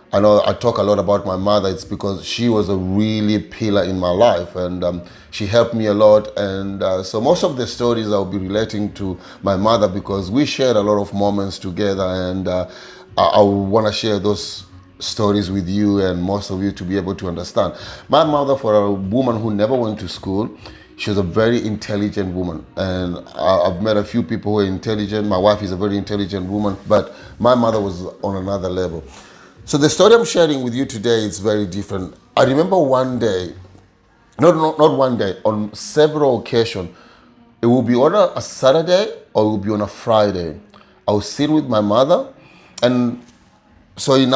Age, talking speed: 30-49, 205 wpm